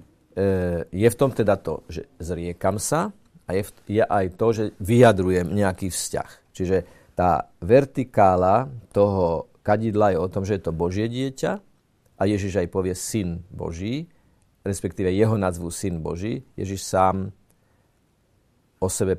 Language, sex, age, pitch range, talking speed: Slovak, male, 50-69, 90-115 Hz, 140 wpm